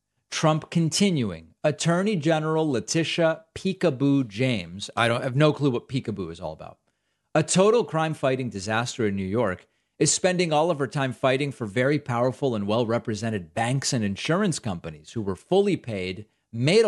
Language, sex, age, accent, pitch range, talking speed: English, male, 40-59, American, 110-155 Hz, 165 wpm